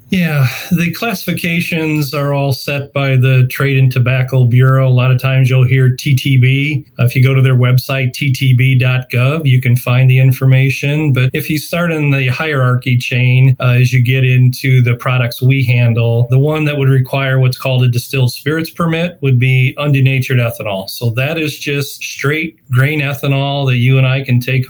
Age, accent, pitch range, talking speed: 40-59, American, 125-145 Hz, 185 wpm